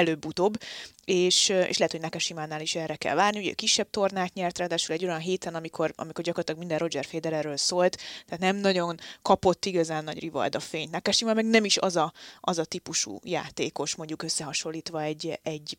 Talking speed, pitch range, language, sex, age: 180 wpm, 160-195 Hz, Hungarian, female, 20-39